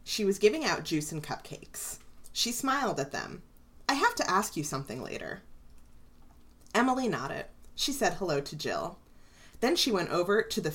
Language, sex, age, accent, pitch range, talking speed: English, female, 30-49, American, 135-205 Hz, 175 wpm